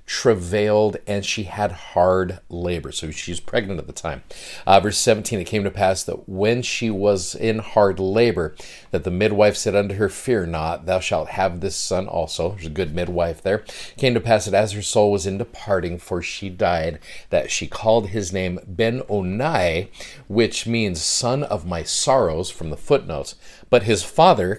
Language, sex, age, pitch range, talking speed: English, male, 40-59, 90-110 Hz, 190 wpm